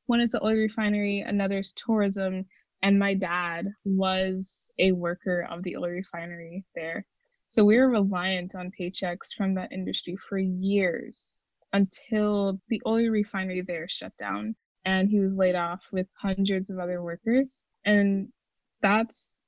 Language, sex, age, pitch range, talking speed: English, female, 20-39, 185-215 Hz, 150 wpm